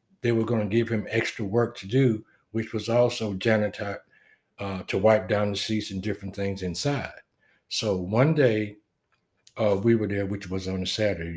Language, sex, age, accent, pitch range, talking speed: English, male, 60-79, American, 100-130 Hz, 185 wpm